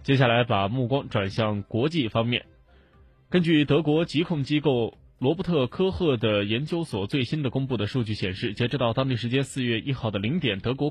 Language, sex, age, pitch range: Chinese, male, 20-39, 110-160 Hz